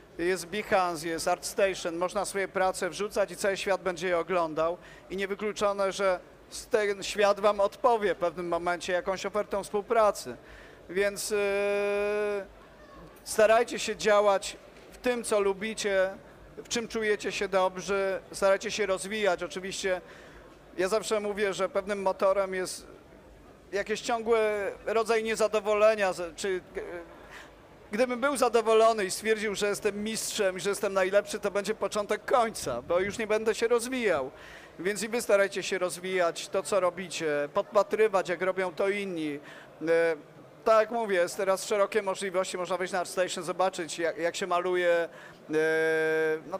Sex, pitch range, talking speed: male, 180-210 Hz, 140 wpm